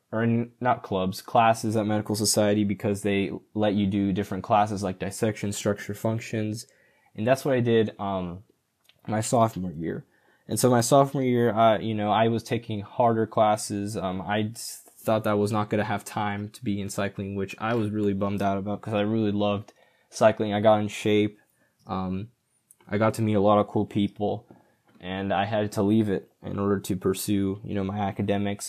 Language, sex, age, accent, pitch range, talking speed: English, male, 10-29, American, 100-115 Hz, 205 wpm